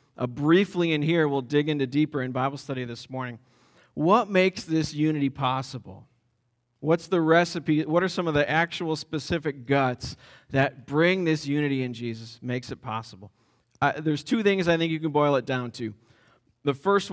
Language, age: English, 40-59